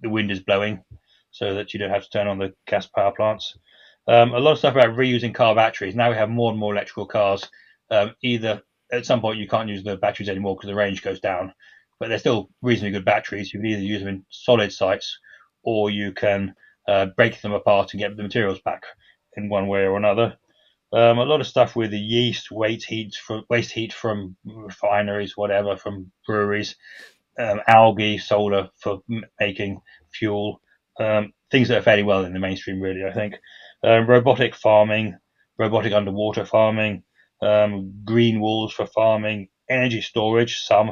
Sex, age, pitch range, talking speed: male, 30-49, 100-115 Hz, 190 wpm